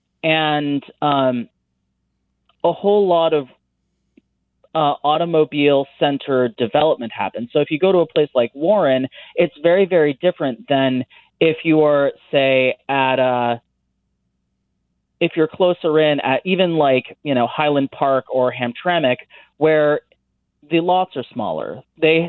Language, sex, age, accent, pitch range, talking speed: English, male, 30-49, American, 130-160 Hz, 135 wpm